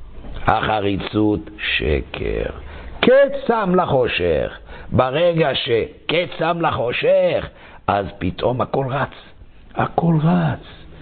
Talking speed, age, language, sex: 80 wpm, 60-79, Hebrew, male